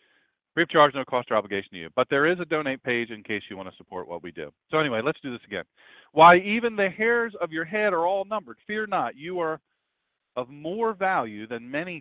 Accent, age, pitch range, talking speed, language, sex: American, 40-59, 105-160 Hz, 240 wpm, English, male